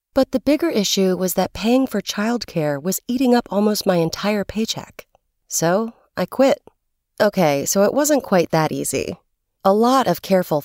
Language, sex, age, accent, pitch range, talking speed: English, female, 30-49, American, 170-225 Hz, 170 wpm